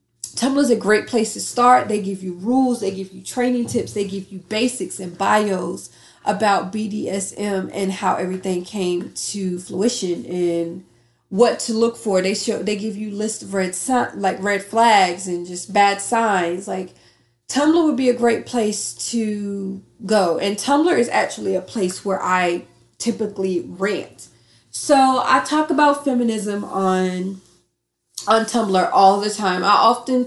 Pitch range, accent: 185-235 Hz, American